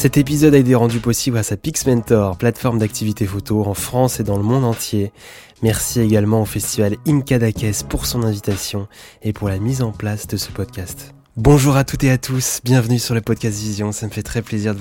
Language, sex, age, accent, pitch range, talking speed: French, male, 20-39, French, 100-125 Hz, 220 wpm